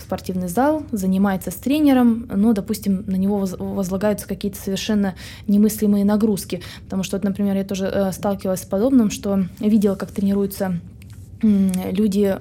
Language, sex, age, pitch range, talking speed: Russian, female, 20-39, 190-220 Hz, 135 wpm